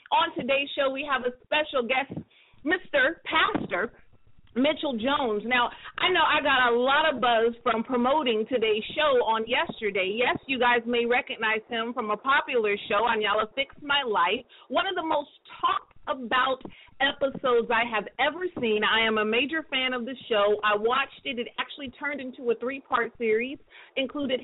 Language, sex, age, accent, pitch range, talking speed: English, female, 40-59, American, 235-290 Hz, 175 wpm